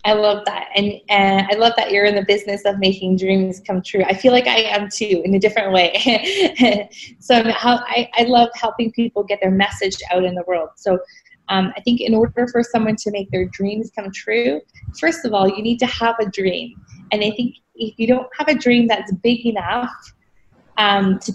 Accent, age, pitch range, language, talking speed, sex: American, 20-39, 195-240 Hz, English, 215 wpm, female